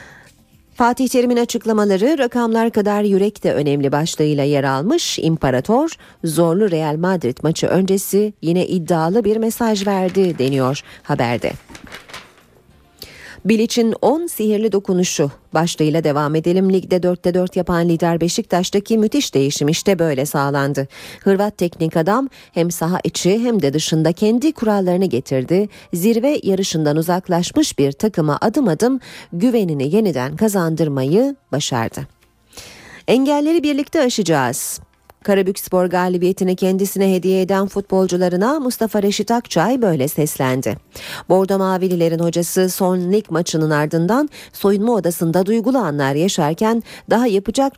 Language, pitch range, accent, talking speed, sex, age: Turkish, 155-215 Hz, native, 115 wpm, female, 40-59